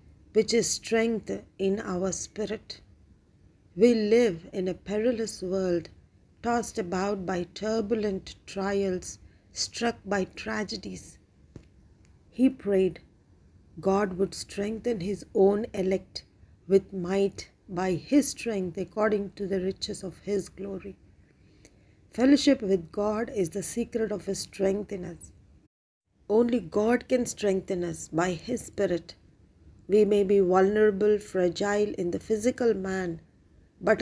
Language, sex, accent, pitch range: English, female, Indian, 175-215 Hz